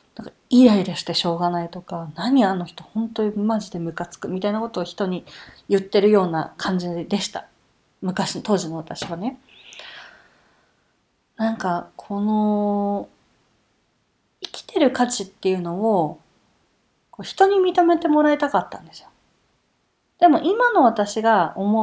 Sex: female